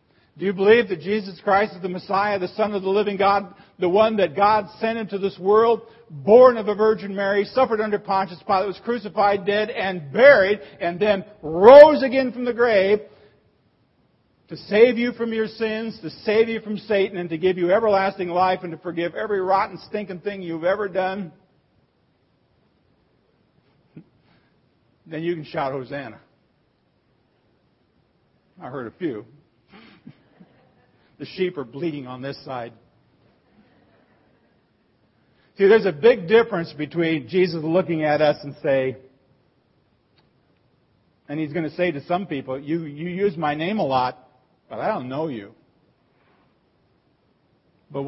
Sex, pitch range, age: male, 155-210 Hz, 50-69